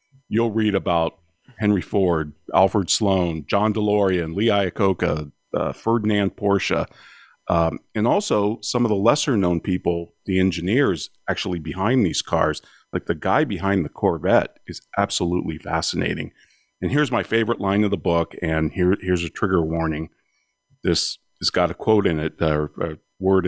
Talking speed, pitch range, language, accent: 160 wpm, 80-100 Hz, English, American